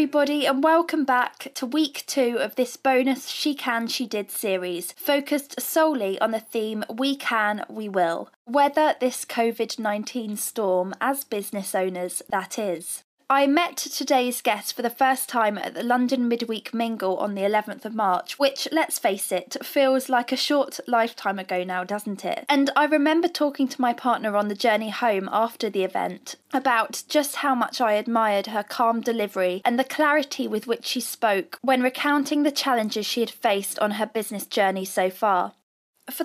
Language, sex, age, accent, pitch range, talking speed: English, female, 20-39, British, 215-275 Hz, 180 wpm